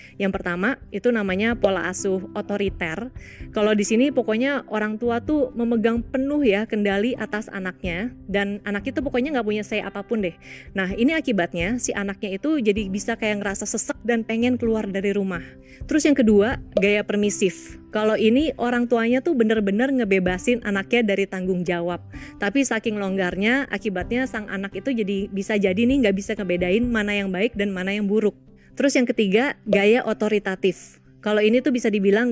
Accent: native